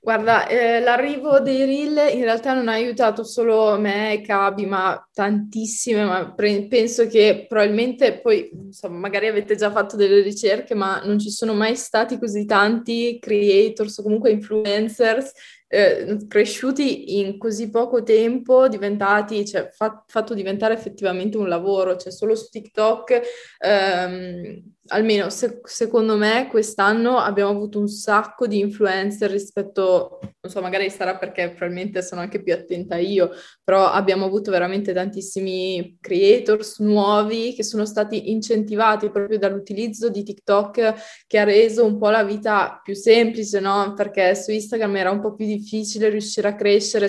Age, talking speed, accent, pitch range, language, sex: 20-39, 150 wpm, native, 200-225 Hz, Italian, female